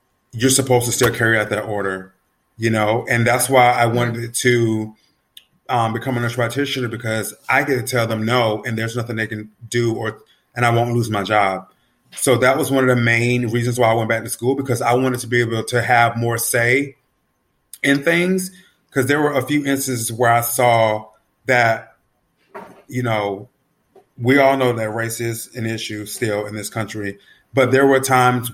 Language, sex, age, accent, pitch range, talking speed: English, male, 30-49, American, 115-130 Hz, 200 wpm